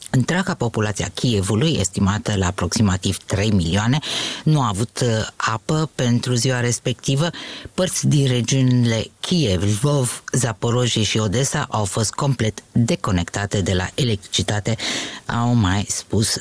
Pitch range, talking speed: 105-135 Hz, 125 wpm